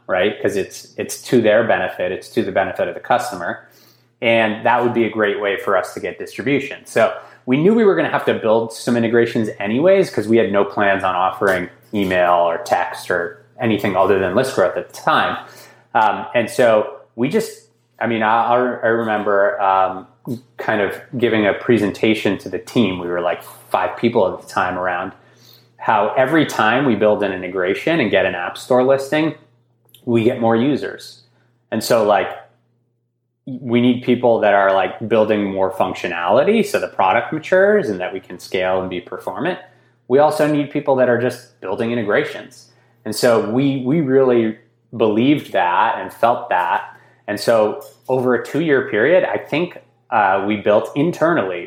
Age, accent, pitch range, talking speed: 20-39, American, 105-125 Hz, 185 wpm